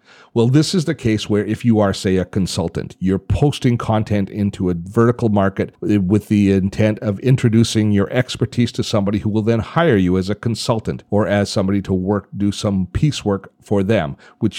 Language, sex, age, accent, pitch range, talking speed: English, male, 40-59, American, 95-115 Hz, 195 wpm